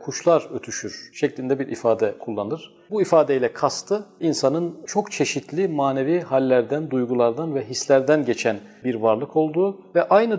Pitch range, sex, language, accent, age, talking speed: 130-165 Hz, male, Turkish, native, 40-59, 135 wpm